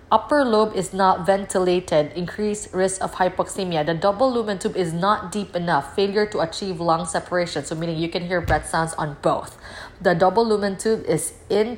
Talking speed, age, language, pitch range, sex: 190 wpm, 20-39, English, 165-205 Hz, female